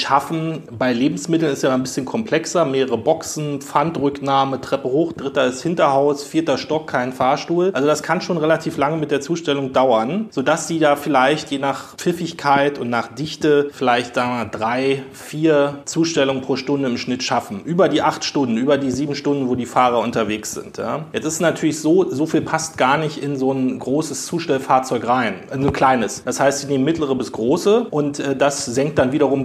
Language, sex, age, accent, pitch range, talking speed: German, male, 30-49, German, 135-165 Hz, 195 wpm